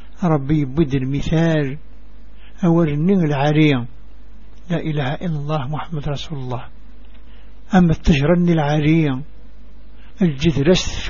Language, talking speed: English, 95 wpm